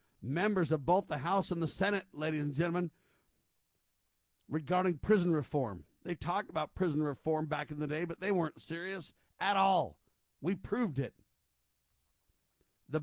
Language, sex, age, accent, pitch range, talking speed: English, male, 50-69, American, 150-180 Hz, 150 wpm